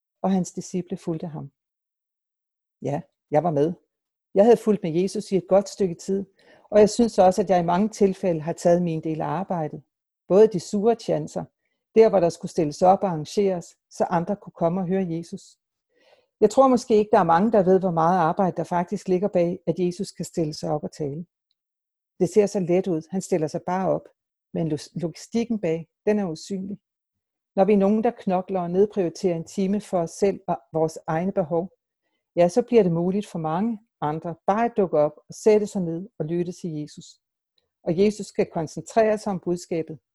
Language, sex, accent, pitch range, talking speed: Danish, female, native, 165-205 Hz, 205 wpm